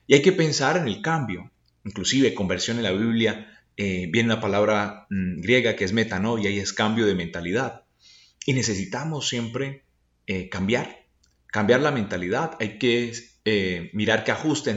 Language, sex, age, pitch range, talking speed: Spanish, male, 30-49, 90-145 Hz, 165 wpm